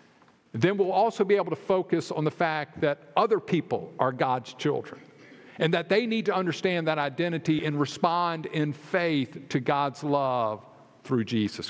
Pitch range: 125-160 Hz